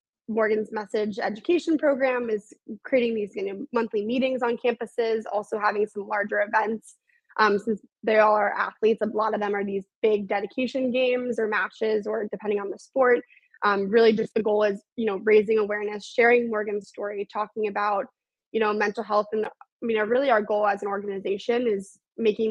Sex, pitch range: female, 205-230 Hz